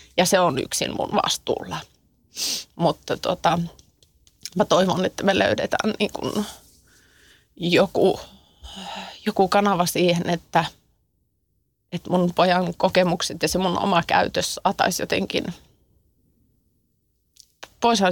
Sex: female